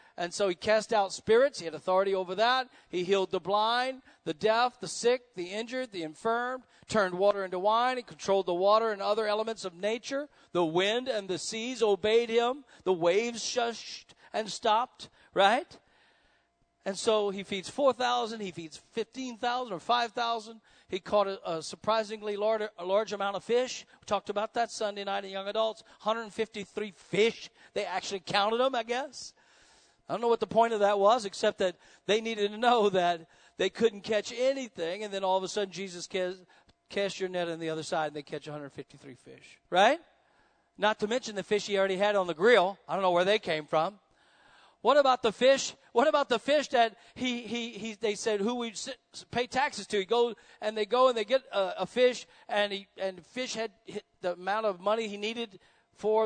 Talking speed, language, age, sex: 200 wpm, English, 50-69, male